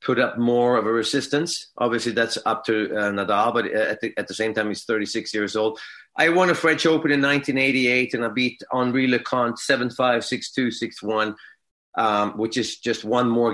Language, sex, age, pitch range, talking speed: English, male, 30-49, 110-145 Hz, 195 wpm